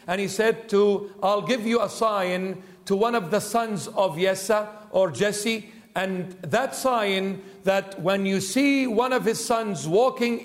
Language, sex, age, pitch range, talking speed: English, male, 50-69, 170-220 Hz, 170 wpm